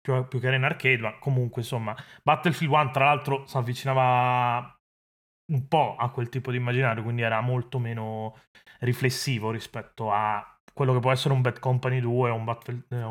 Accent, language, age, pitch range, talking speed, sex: native, Italian, 20-39, 115-135 Hz, 185 wpm, male